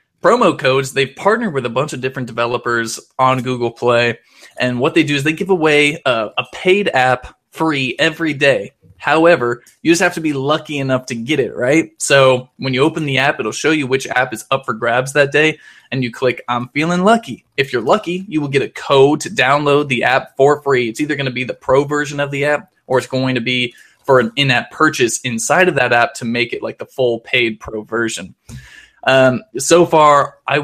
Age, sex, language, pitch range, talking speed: 20-39, male, English, 125-145 Hz, 225 wpm